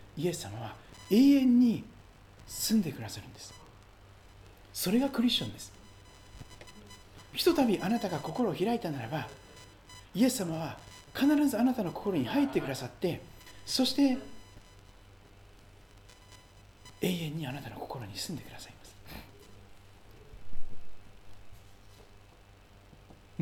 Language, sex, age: Japanese, male, 40-59